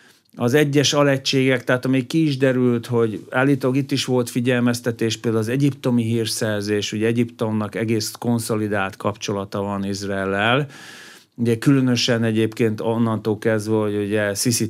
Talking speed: 135 wpm